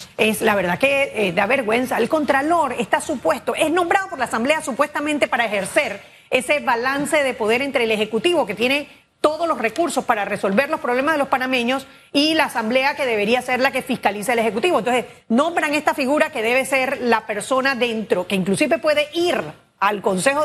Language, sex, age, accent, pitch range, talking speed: Spanish, female, 40-59, American, 240-310 Hz, 190 wpm